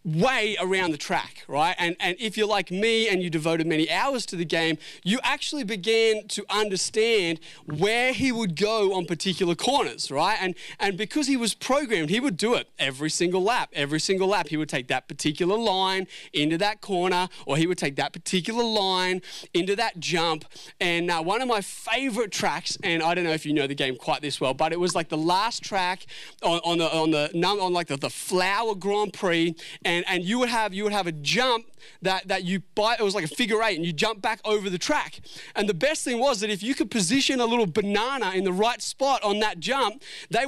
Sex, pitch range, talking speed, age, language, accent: male, 160-220 Hz, 230 wpm, 30-49, English, Australian